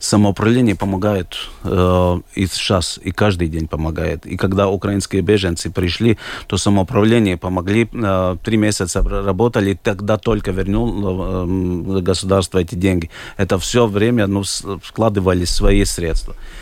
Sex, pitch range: male, 95-105 Hz